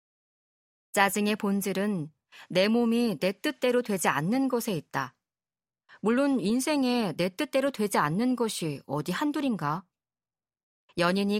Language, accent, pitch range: Korean, native, 165-225 Hz